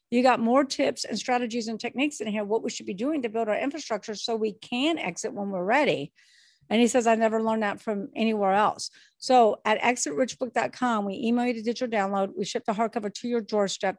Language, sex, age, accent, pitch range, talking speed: English, female, 50-69, American, 200-245 Hz, 225 wpm